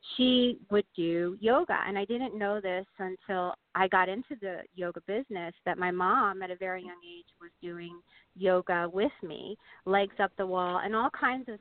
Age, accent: 30-49, American